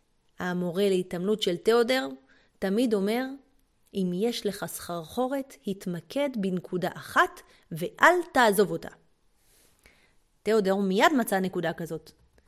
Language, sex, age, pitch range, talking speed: Hebrew, female, 30-49, 185-235 Hz, 100 wpm